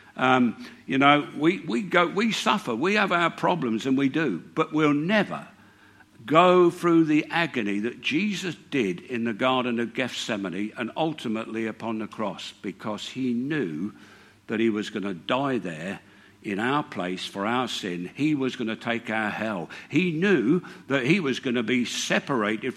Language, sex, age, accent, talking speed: English, male, 60-79, British, 175 wpm